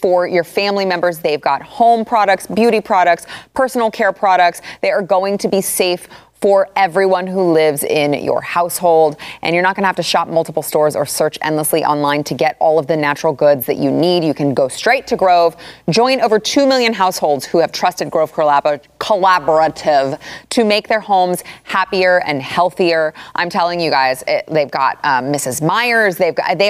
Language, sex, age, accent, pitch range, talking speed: English, female, 20-39, American, 160-215 Hz, 185 wpm